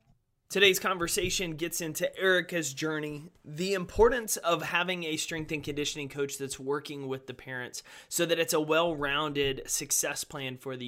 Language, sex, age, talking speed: English, male, 20-39, 160 wpm